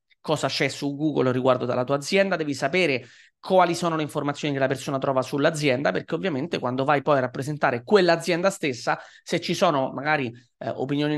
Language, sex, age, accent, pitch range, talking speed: Italian, male, 30-49, native, 130-170 Hz, 185 wpm